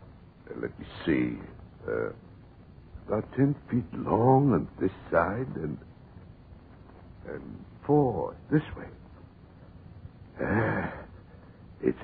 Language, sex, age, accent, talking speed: English, male, 60-79, American, 90 wpm